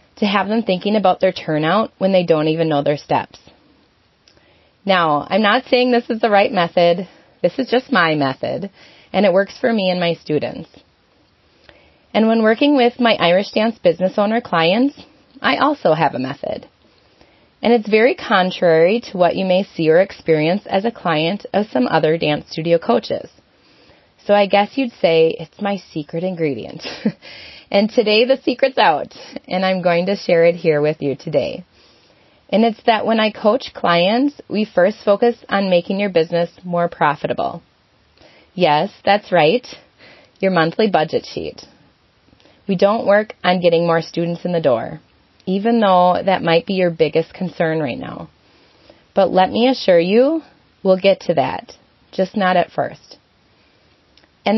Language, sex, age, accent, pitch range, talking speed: English, female, 30-49, American, 170-220 Hz, 165 wpm